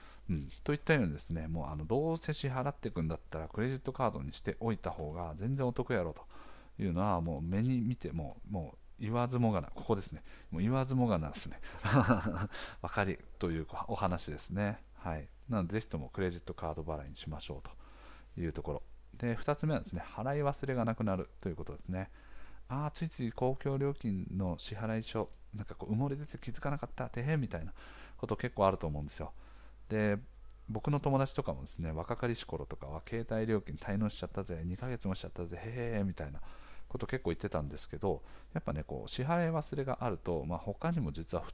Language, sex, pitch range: Japanese, male, 85-125 Hz